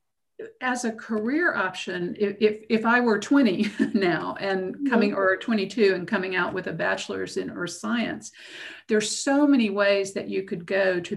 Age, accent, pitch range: 50-69, American, 180-210 Hz